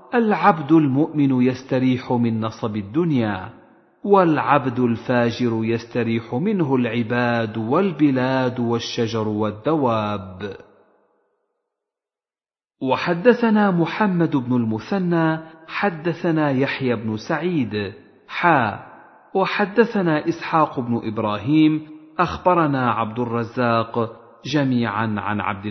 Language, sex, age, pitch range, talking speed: Arabic, male, 40-59, 115-165 Hz, 75 wpm